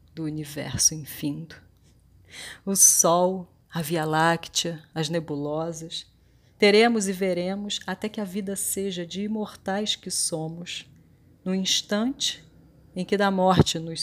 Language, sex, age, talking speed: Portuguese, female, 40-59, 125 wpm